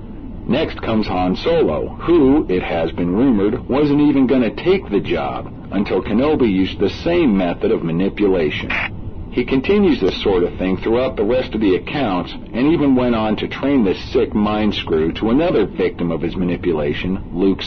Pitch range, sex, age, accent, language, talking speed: 90-115 Hz, male, 50-69, American, English, 180 wpm